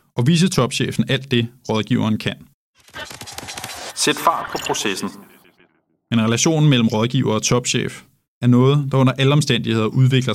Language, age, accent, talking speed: Danish, 20-39, native, 140 wpm